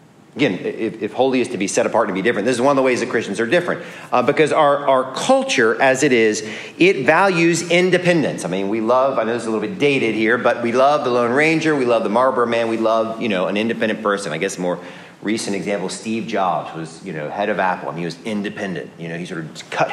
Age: 40-59